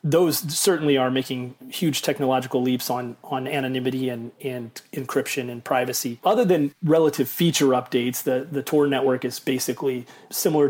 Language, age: English, 30-49